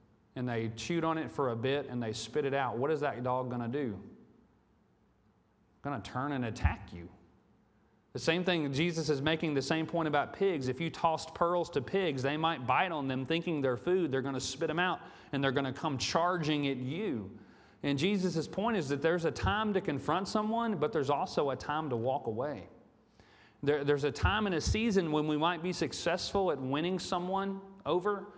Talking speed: 210 wpm